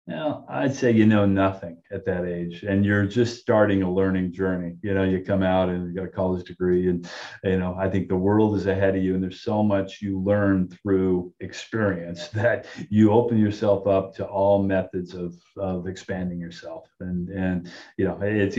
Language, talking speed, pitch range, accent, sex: English, 205 wpm, 95-105 Hz, American, male